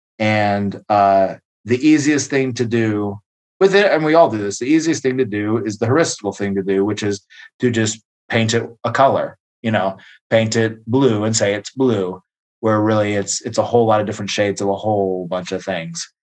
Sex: male